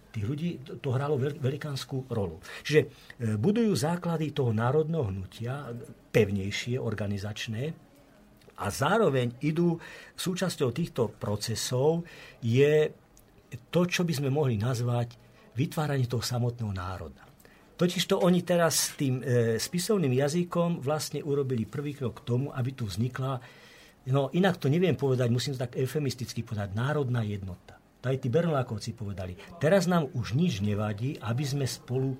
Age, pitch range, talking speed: 50-69, 115-150 Hz, 140 wpm